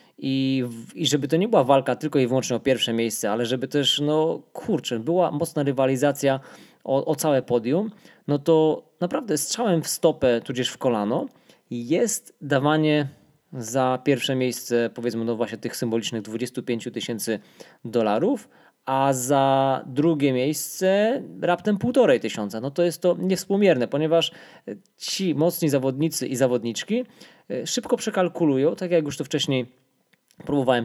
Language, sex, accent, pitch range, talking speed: Polish, male, native, 120-160 Hz, 145 wpm